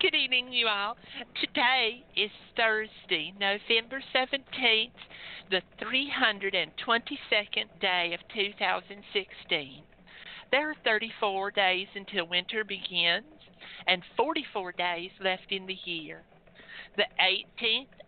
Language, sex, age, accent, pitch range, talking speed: English, male, 50-69, American, 180-235 Hz, 100 wpm